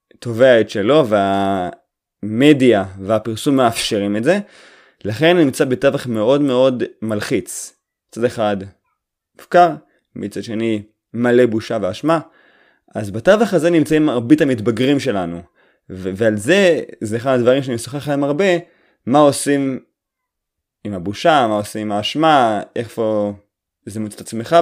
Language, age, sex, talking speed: Hebrew, 20-39, male, 130 wpm